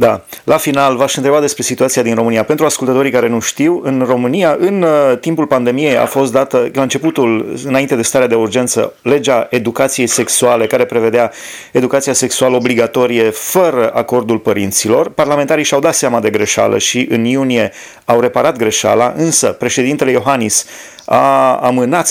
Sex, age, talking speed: male, 30-49, 155 wpm